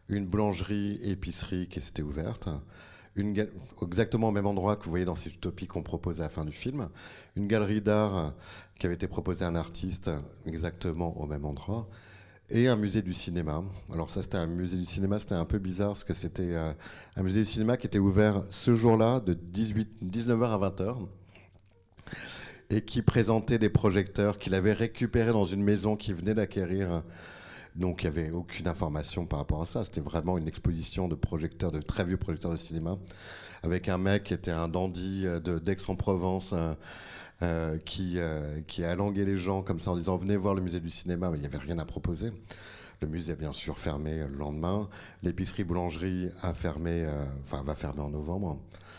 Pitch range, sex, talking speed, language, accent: 85-100 Hz, male, 195 wpm, French, French